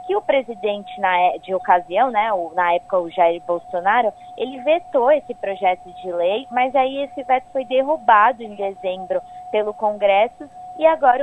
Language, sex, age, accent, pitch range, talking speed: Portuguese, female, 20-39, Brazilian, 205-265 Hz, 155 wpm